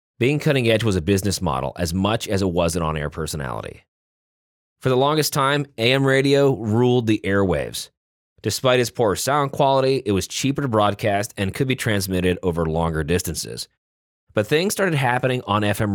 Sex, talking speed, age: male, 175 wpm, 30-49